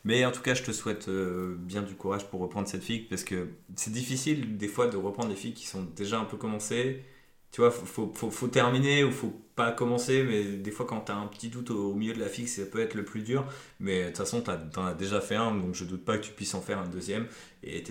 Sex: male